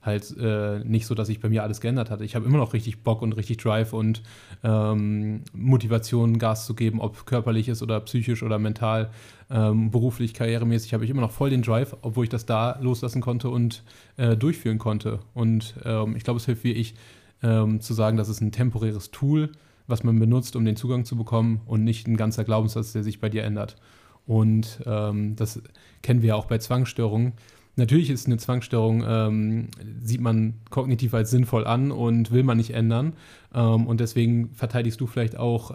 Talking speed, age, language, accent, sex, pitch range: 200 wpm, 30-49, German, German, male, 110-120 Hz